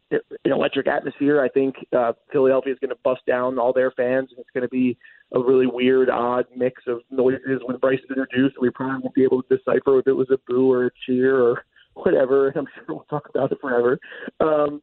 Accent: American